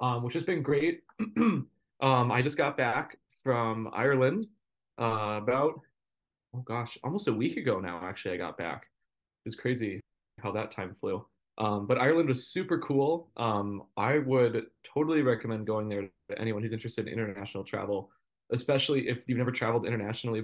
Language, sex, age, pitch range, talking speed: English, male, 20-39, 110-135 Hz, 165 wpm